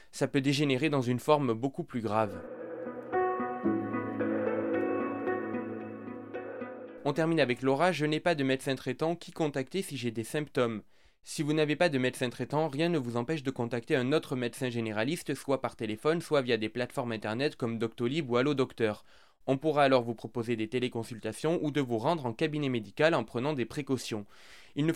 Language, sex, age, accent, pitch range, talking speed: French, male, 20-39, French, 120-150 Hz, 180 wpm